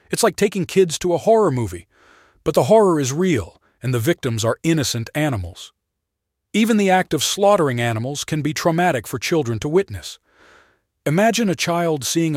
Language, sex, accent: English, male, American